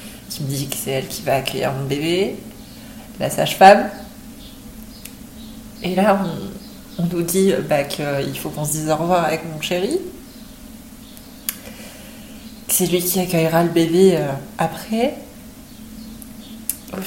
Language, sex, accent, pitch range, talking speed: French, female, French, 160-225 Hz, 135 wpm